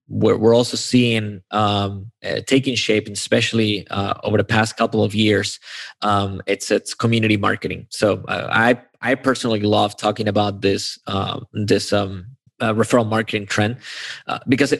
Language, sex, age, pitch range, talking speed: English, male, 20-39, 105-115 Hz, 160 wpm